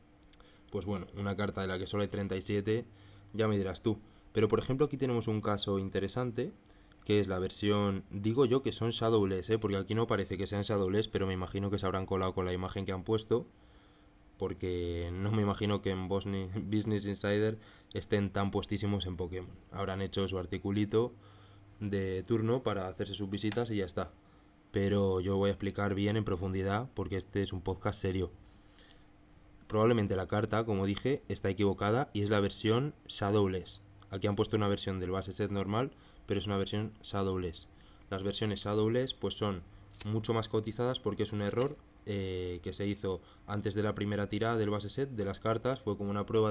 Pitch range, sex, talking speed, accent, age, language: 95-105 Hz, male, 190 wpm, Spanish, 20-39, Spanish